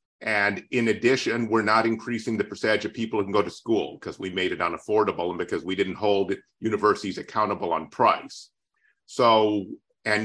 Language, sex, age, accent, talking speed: English, male, 50-69, American, 180 wpm